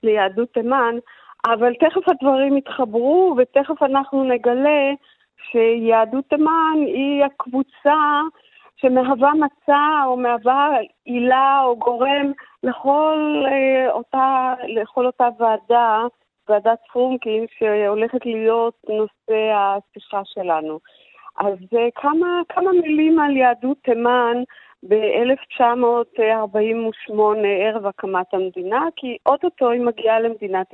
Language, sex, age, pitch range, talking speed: Hebrew, female, 40-59, 215-275 Hz, 100 wpm